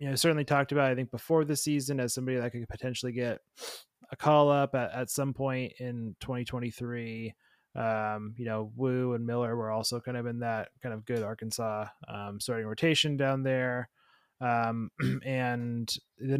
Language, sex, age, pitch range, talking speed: English, male, 20-39, 115-135 Hz, 180 wpm